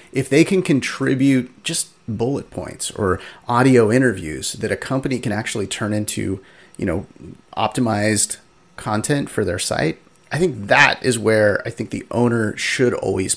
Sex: male